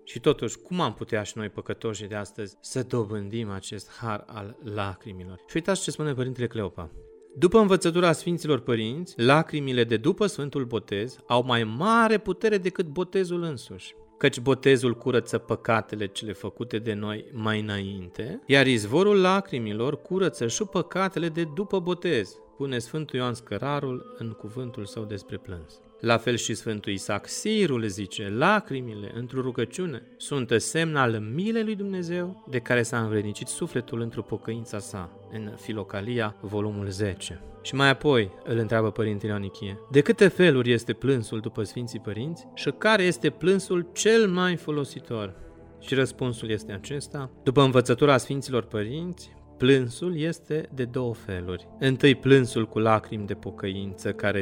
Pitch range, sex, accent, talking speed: 105-155 Hz, male, native, 150 wpm